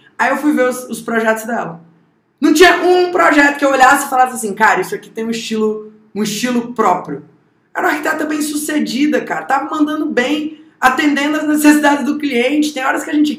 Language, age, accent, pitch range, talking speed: Portuguese, 20-39, Brazilian, 210-285 Hz, 200 wpm